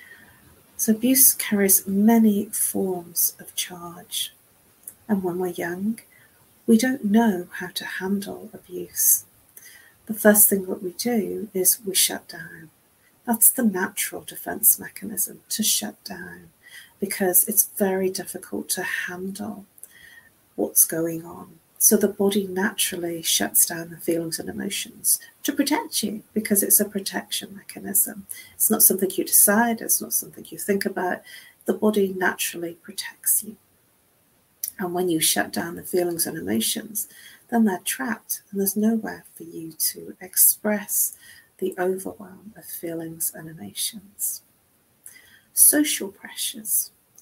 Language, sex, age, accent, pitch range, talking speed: English, female, 40-59, British, 180-220 Hz, 135 wpm